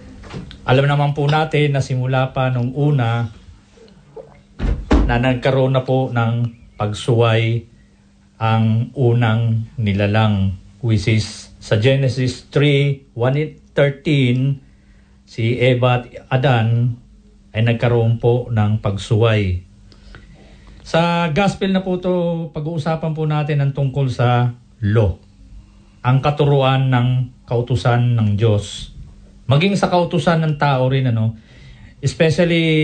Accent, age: native, 50-69